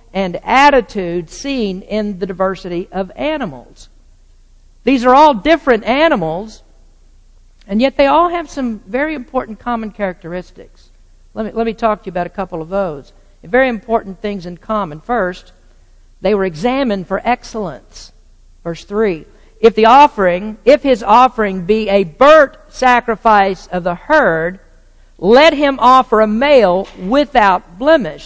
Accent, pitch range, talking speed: American, 190-275 Hz, 145 wpm